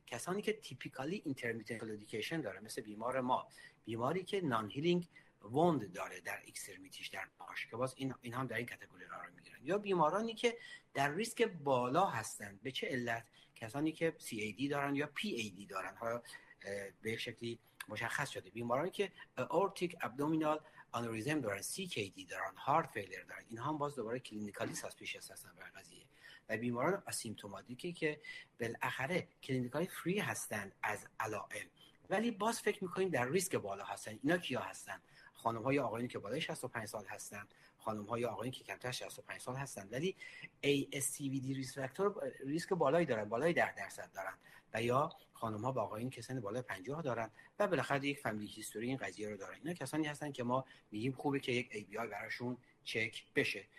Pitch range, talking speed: 115-165 Hz, 165 wpm